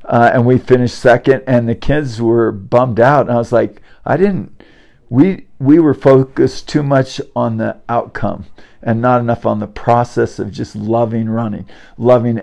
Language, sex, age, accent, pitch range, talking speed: English, male, 50-69, American, 115-130 Hz, 180 wpm